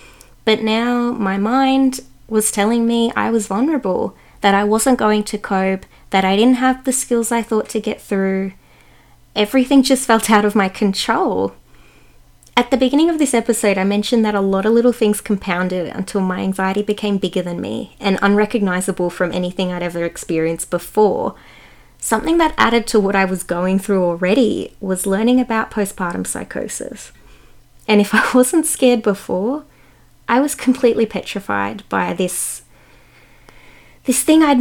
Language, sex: English, female